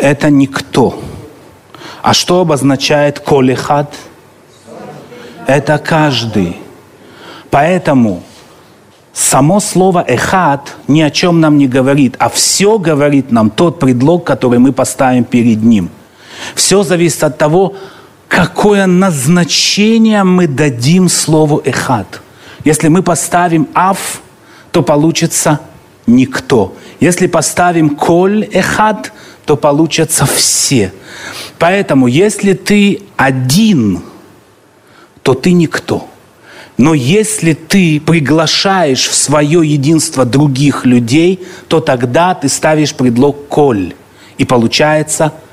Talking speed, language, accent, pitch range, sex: 100 wpm, Russian, native, 135-180 Hz, male